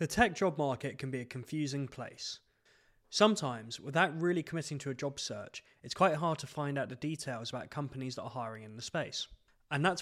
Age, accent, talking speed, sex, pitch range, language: 20-39, British, 210 wpm, male, 125-155 Hz, English